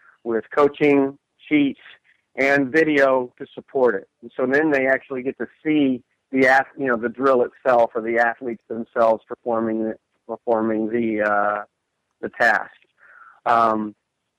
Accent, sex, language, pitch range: American, male, English, 115-140 Hz